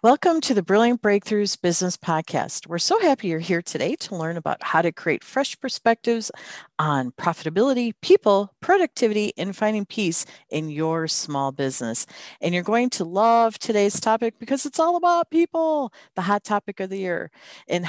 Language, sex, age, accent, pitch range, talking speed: English, female, 40-59, American, 170-250 Hz, 170 wpm